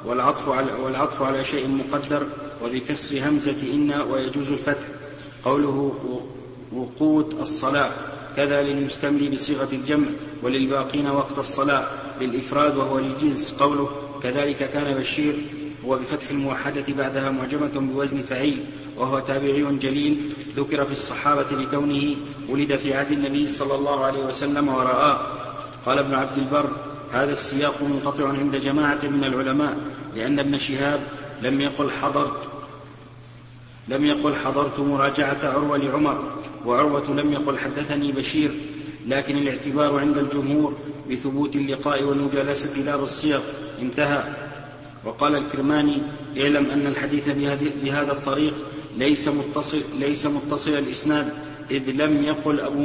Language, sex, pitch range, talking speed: Arabic, male, 140-145 Hz, 120 wpm